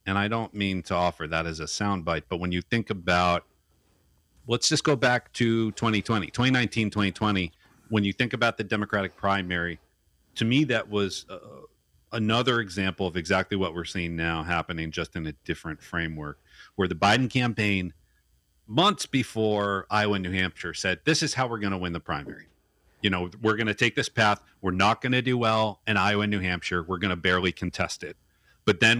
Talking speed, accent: 200 wpm, American